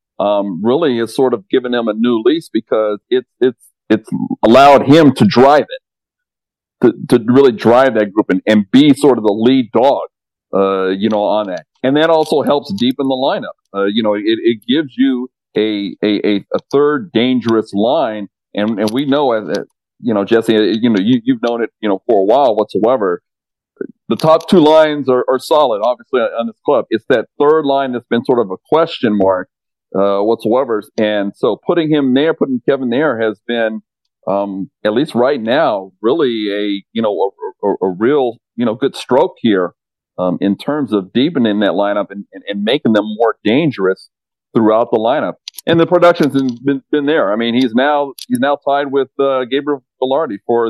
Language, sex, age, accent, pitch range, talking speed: English, male, 50-69, American, 105-155 Hz, 195 wpm